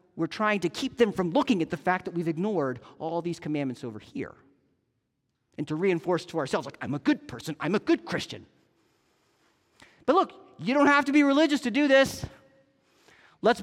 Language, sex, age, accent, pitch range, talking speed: English, male, 40-59, American, 195-265 Hz, 195 wpm